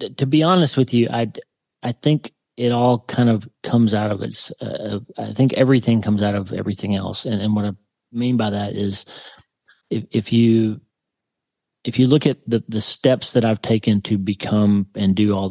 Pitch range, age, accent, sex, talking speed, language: 100-115 Hz, 30-49, American, male, 195 wpm, English